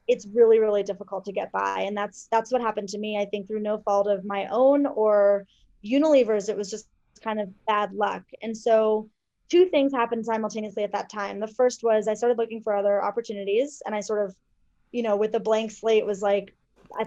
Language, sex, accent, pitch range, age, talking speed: English, female, American, 205-230 Hz, 20-39, 220 wpm